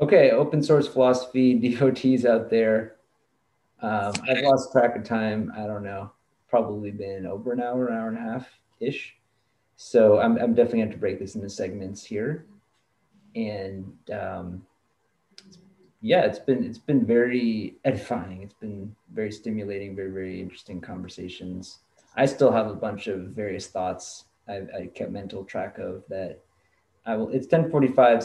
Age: 30-49